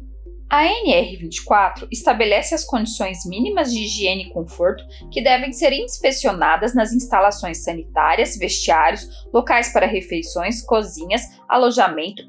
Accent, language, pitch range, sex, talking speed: Brazilian, Portuguese, 195-300 Hz, female, 110 wpm